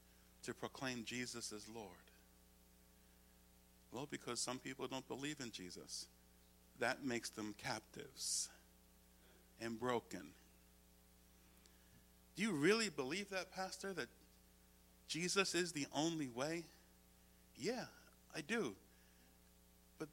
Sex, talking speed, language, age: male, 105 wpm, English, 50-69